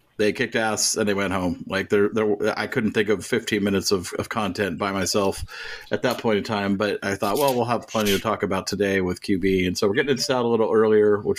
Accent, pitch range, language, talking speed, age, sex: American, 105-135 Hz, English, 255 wpm, 40-59, male